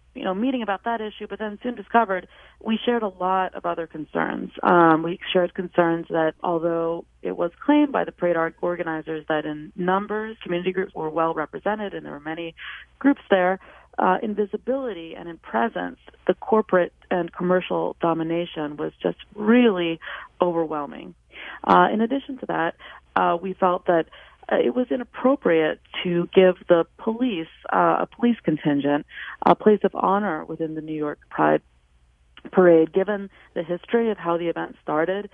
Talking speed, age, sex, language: 165 wpm, 30-49, female, English